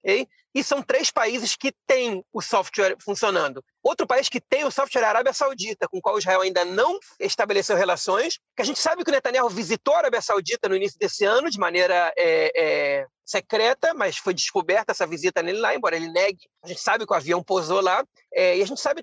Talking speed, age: 225 wpm, 40-59